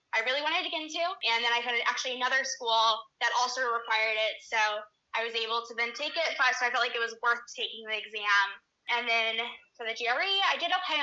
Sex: female